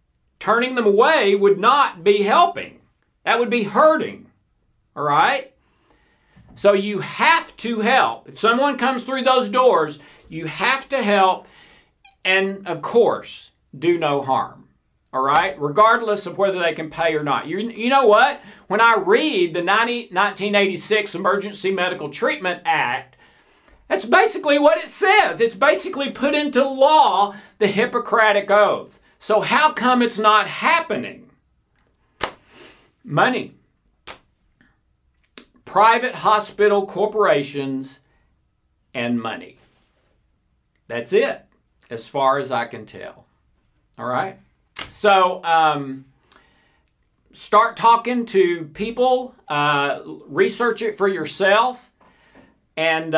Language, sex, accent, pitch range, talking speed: English, male, American, 165-250 Hz, 120 wpm